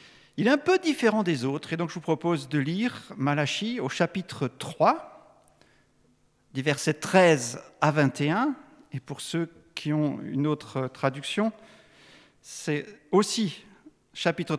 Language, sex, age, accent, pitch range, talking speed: French, male, 50-69, French, 130-200 Hz, 135 wpm